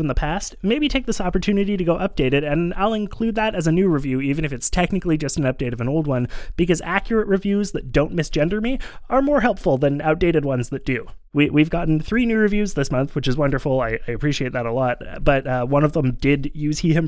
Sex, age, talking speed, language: male, 20-39, 245 wpm, English